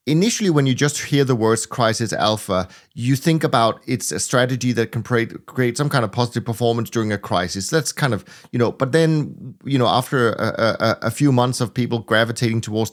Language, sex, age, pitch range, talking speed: English, male, 30-49, 110-140 Hz, 210 wpm